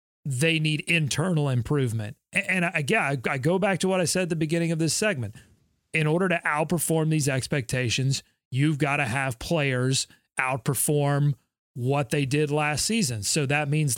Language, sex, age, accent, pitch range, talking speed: English, male, 30-49, American, 140-165 Hz, 175 wpm